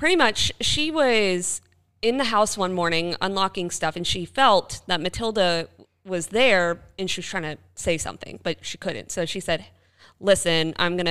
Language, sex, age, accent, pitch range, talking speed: English, female, 20-39, American, 160-205 Hz, 185 wpm